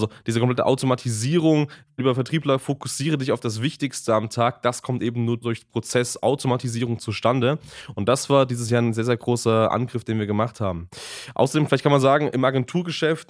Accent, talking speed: German, 190 wpm